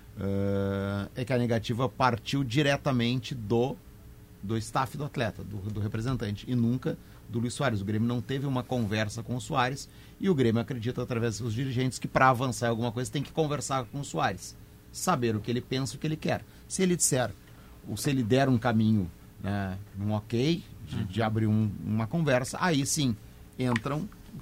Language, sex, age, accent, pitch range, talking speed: Portuguese, male, 40-59, Brazilian, 105-130 Hz, 195 wpm